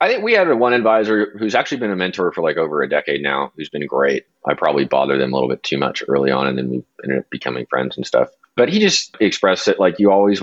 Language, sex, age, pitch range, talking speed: English, male, 30-49, 70-90 Hz, 275 wpm